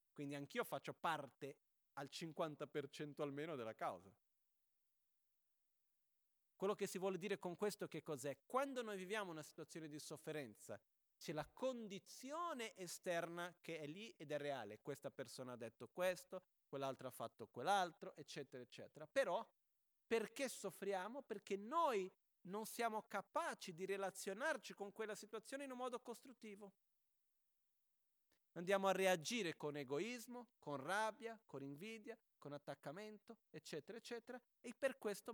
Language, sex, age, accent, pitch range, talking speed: Italian, male, 40-59, native, 150-220 Hz, 135 wpm